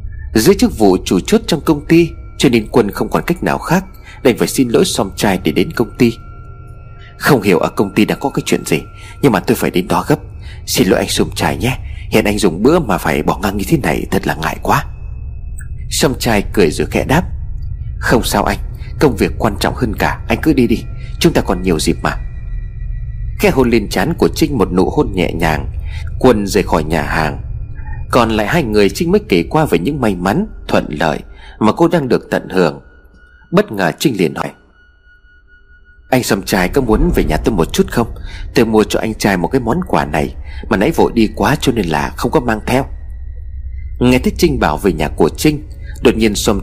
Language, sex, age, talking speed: Vietnamese, male, 30-49, 225 wpm